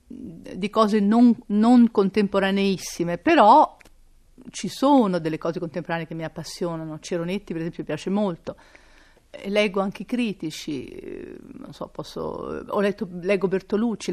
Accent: native